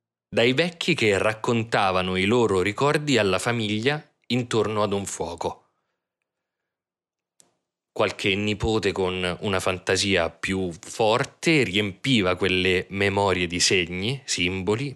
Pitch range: 95-125 Hz